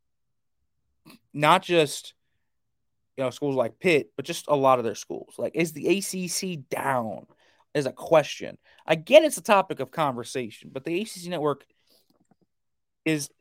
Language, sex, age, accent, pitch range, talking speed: English, male, 20-39, American, 125-175 Hz, 150 wpm